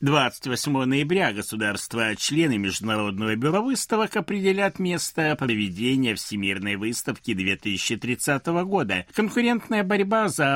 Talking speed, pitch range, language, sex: 90 wpm, 105-180 Hz, Russian, male